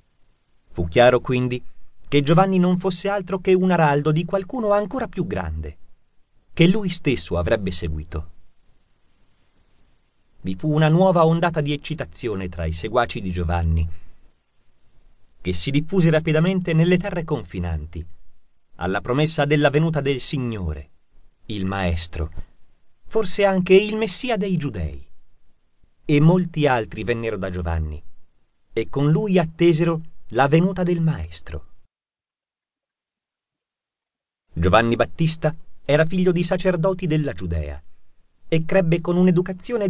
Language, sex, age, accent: Italian, male, 30-49, native